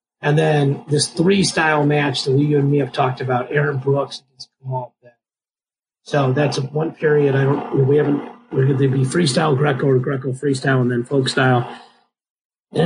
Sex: male